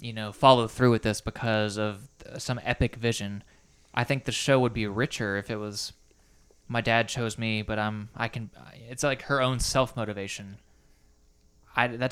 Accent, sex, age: American, male, 20-39